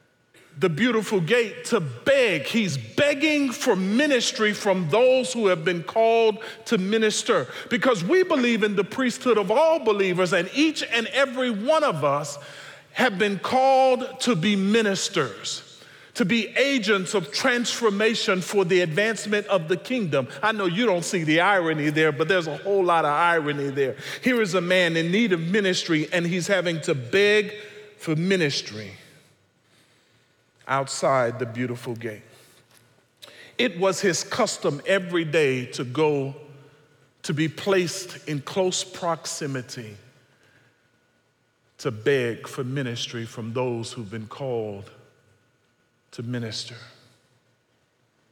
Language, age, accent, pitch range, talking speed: English, 40-59, American, 145-220 Hz, 135 wpm